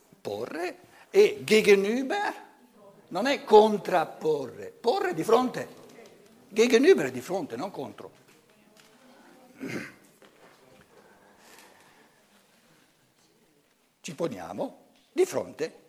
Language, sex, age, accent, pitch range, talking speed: Italian, male, 60-79, native, 195-280 Hz, 70 wpm